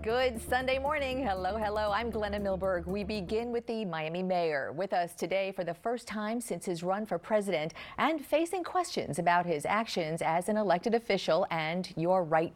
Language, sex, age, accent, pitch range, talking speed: English, female, 50-69, American, 165-220 Hz, 185 wpm